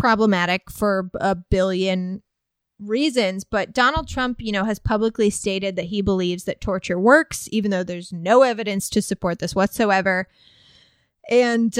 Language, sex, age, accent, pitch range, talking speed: English, female, 20-39, American, 190-235 Hz, 145 wpm